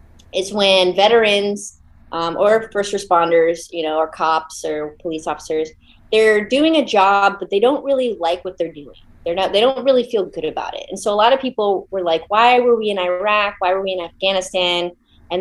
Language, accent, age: English, American, 30-49